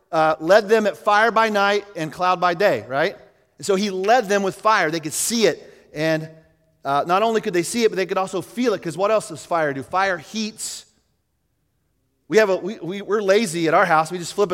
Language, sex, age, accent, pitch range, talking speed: English, male, 30-49, American, 155-200 Hz, 240 wpm